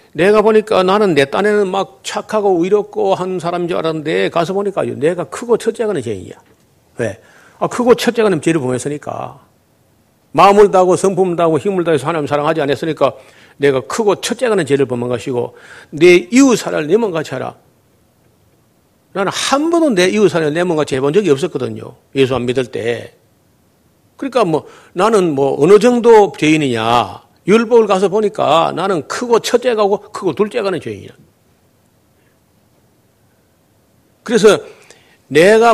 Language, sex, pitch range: Korean, male, 150-215 Hz